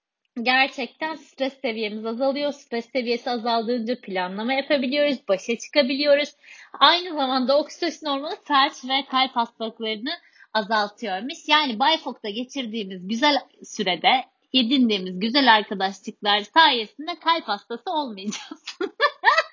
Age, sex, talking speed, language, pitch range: 30-49, female, 100 wpm, Turkish, 245-330 Hz